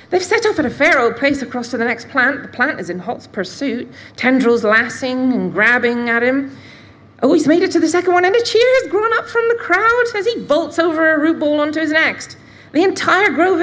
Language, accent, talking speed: English, British, 240 wpm